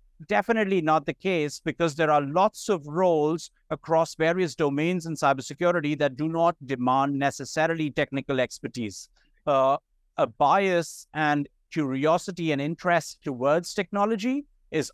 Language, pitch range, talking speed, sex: English, 140-175 Hz, 130 wpm, male